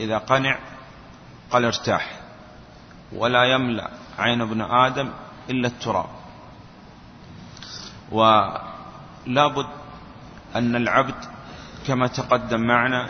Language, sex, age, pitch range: Arabic, male, 30-49, 115-135 Hz